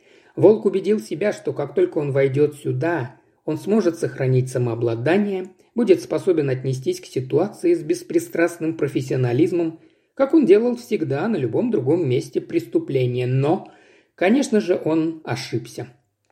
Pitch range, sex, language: 130-185 Hz, male, Russian